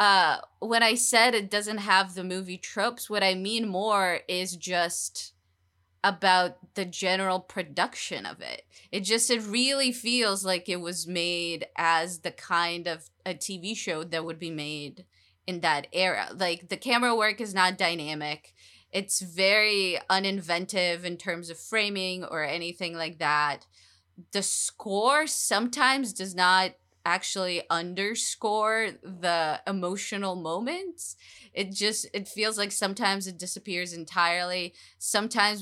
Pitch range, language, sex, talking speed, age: 170-205 Hz, English, female, 140 wpm, 20-39